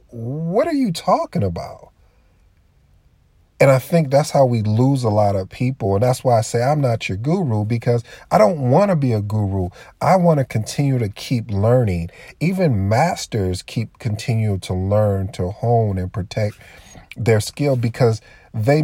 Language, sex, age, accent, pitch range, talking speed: English, male, 40-59, American, 95-130 Hz, 170 wpm